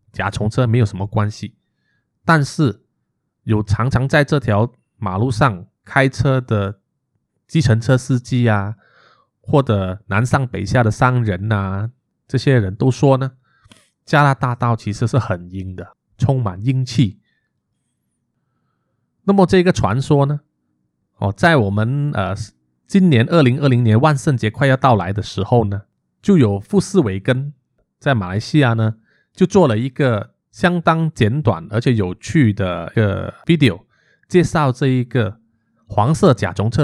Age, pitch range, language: 20-39, 105-145 Hz, Chinese